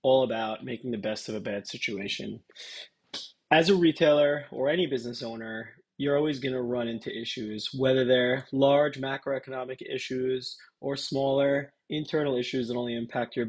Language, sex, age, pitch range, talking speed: English, male, 20-39, 120-145 Hz, 155 wpm